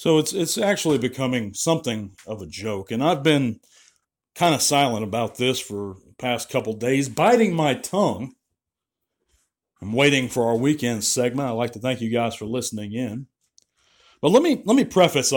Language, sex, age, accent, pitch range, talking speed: English, male, 40-59, American, 115-145 Hz, 185 wpm